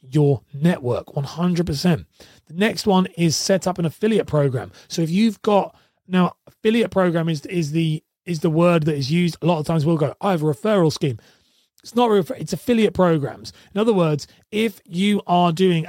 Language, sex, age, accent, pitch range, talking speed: English, male, 30-49, British, 155-200 Hz, 195 wpm